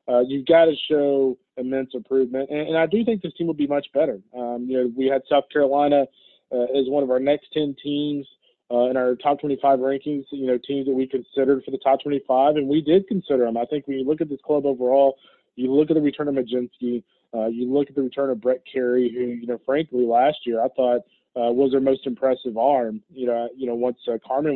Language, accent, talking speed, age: English, American, 245 wpm, 20-39